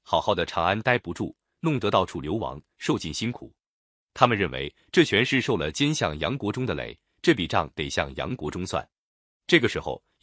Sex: male